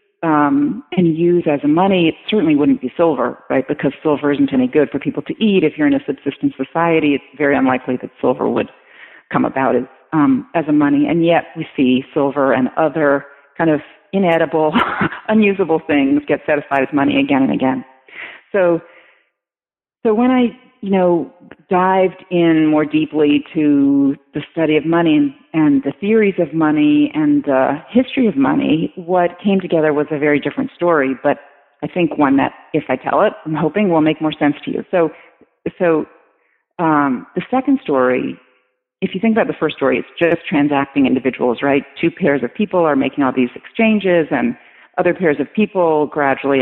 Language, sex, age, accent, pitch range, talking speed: English, female, 40-59, American, 140-185 Hz, 185 wpm